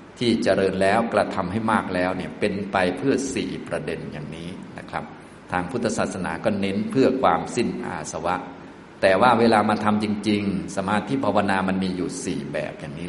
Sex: male